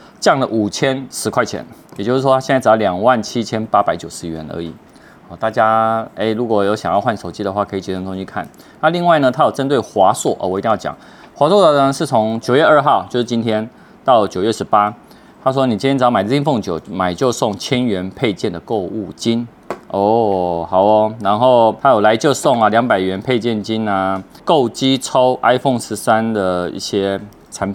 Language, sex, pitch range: Chinese, male, 105-140 Hz